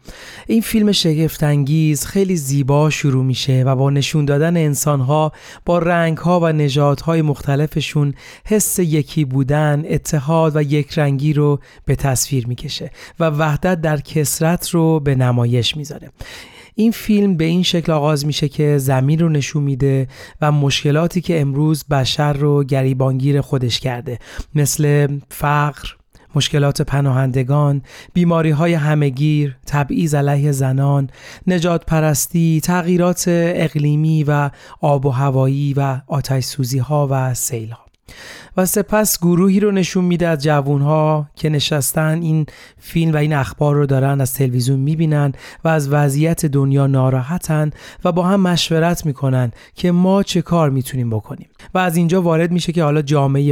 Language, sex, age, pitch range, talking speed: Persian, male, 30-49, 140-165 Hz, 140 wpm